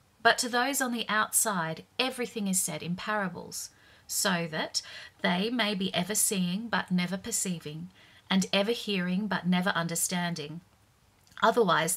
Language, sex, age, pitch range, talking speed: English, female, 40-59, 175-225 Hz, 140 wpm